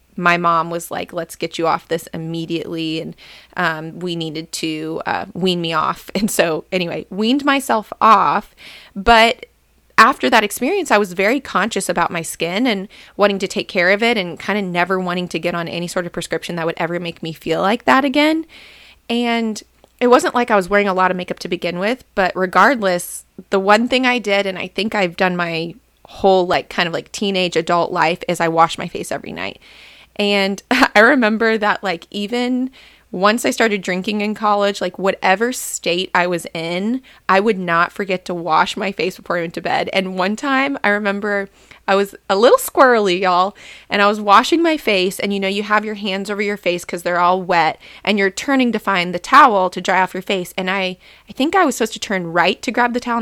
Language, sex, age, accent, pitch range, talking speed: English, female, 20-39, American, 175-215 Hz, 220 wpm